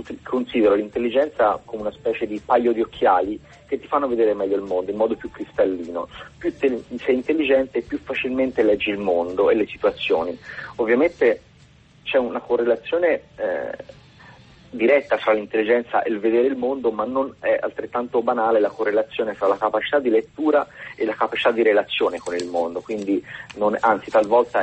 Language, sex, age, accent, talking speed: Italian, male, 30-49, native, 170 wpm